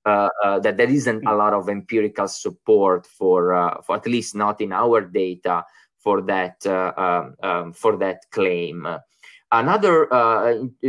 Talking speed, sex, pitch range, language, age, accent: 160 wpm, male, 105-145 Hz, English, 20-39, Italian